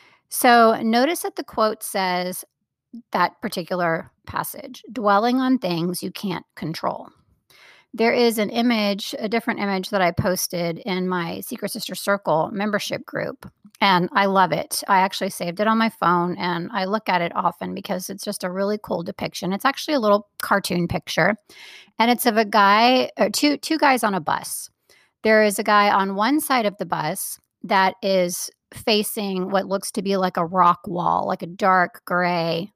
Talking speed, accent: 180 wpm, American